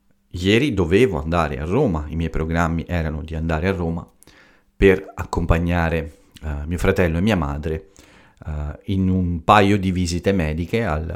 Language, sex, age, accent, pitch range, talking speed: Italian, male, 40-59, native, 80-95 Hz, 145 wpm